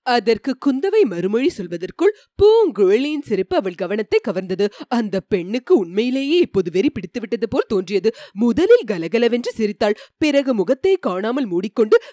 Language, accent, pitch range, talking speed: Tamil, native, 210-320 Hz, 125 wpm